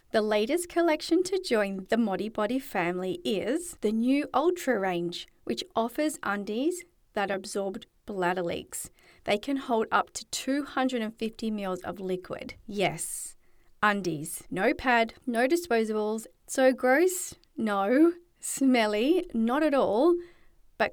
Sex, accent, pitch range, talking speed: female, Australian, 190-265 Hz, 125 wpm